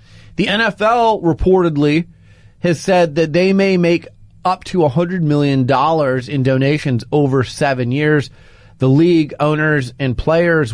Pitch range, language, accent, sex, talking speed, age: 115-170 Hz, English, American, male, 130 wpm, 30-49